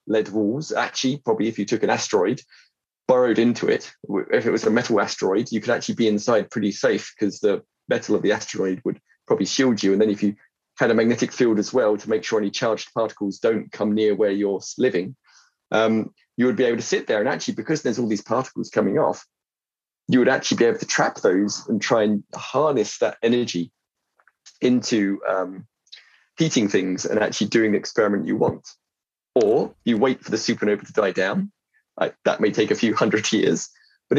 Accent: British